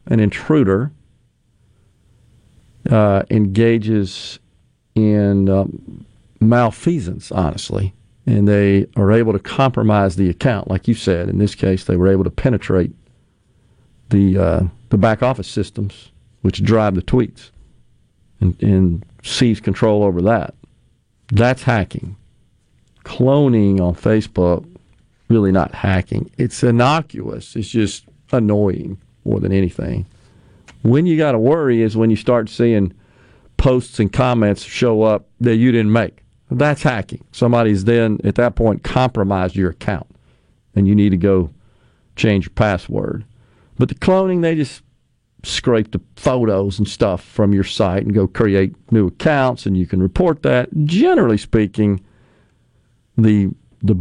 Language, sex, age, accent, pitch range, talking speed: English, male, 50-69, American, 95-120 Hz, 135 wpm